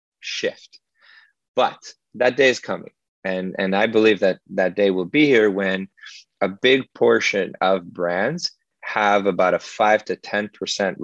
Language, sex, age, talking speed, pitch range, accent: English, male, 30-49, 150 wpm, 95-110 Hz, American